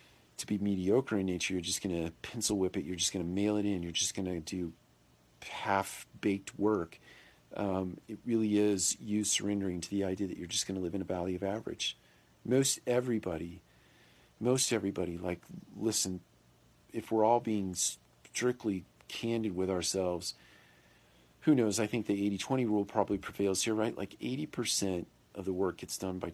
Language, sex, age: English, male, 40-59